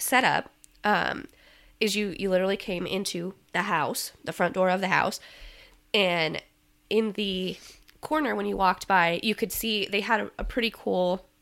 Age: 20-39